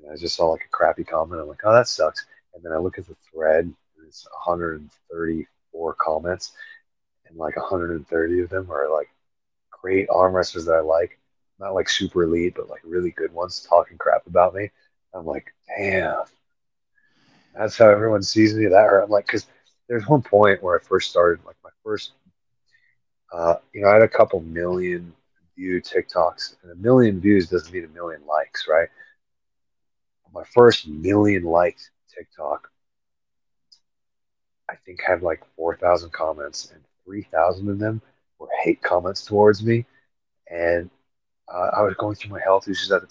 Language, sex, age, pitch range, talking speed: English, male, 30-49, 85-135 Hz, 165 wpm